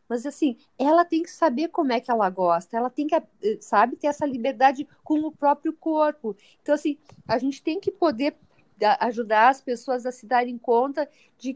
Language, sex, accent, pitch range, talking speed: Portuguese, female, Brazilian, 240-310 Hz, 190 wpm